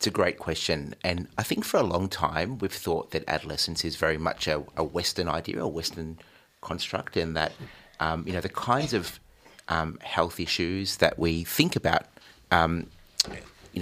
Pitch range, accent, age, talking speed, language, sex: 80-95 Hz, Australian, 30-49, 180 wpm, English, male